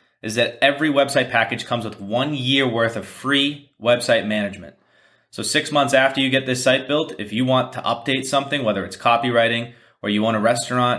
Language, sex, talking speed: English, male, 200 wpm